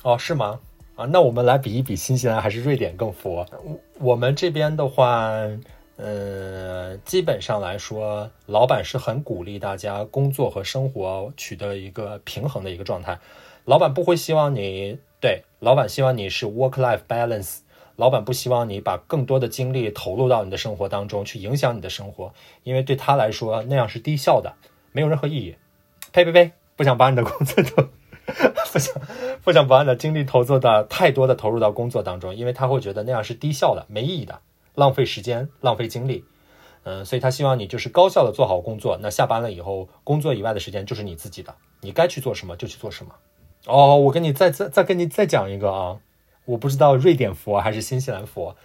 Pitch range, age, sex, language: 105-140 Hz, 20-39, male, Chinese